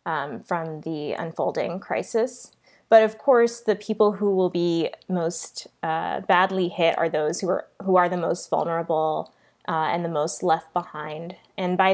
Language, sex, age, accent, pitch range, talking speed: English, female, 20-39, American, 165-200 Hz, 170 wpm